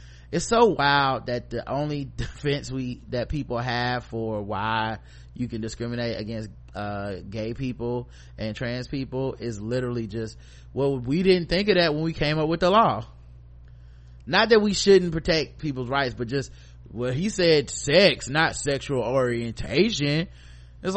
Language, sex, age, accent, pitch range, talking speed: English, male, 20-39, American, 115-180 Hz, 160 wpm